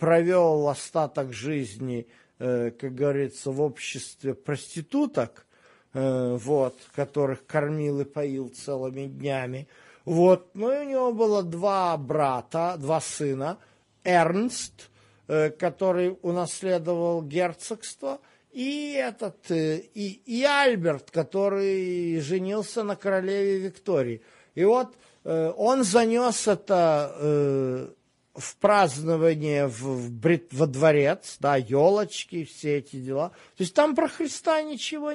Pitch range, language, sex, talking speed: 145-205 Hz, Russian, male, 100 wpm